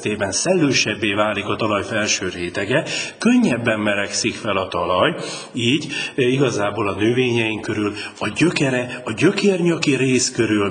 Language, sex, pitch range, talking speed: Hungarian, male, 100-130 Hz, 125 wpm